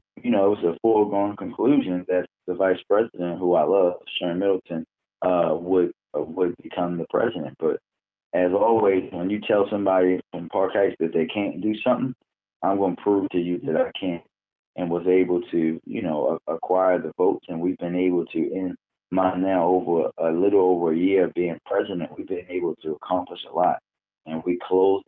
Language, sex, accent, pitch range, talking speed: English, male, American, 90-100 Hz, 200 wpm